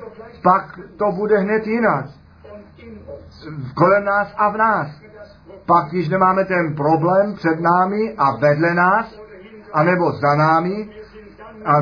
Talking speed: 125 wpm